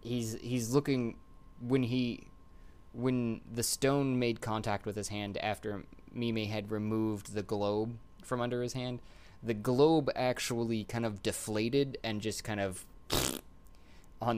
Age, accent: 20-39, American